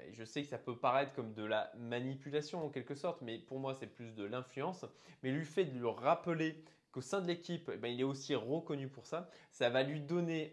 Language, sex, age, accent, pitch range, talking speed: French, male, 20-39, French, 120-155 Hz, 230 wpm